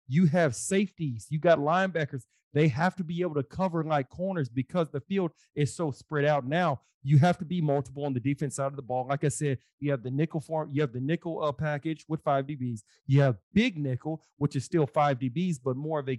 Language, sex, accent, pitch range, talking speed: English, male, American, 135-165 Hz, 240 wpm